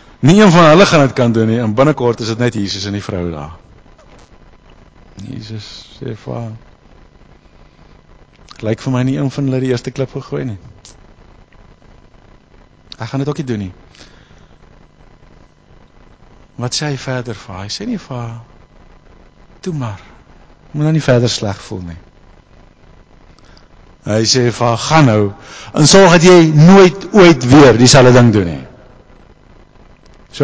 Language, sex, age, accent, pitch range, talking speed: English, male, 50-69, Dutch, 105-145 Hz, 150 wpm